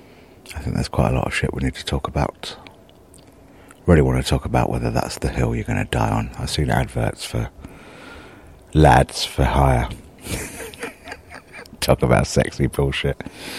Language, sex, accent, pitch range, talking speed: English, male, British, 70-85 Hz, 170 wpm